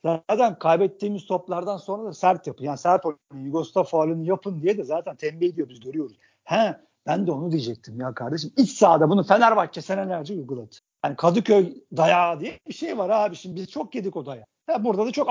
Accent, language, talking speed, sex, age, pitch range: native, Turkish, 200 wpm, male, 50-69, 170-225 Hz